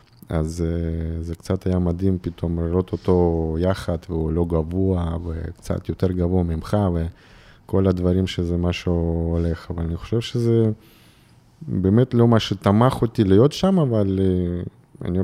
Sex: male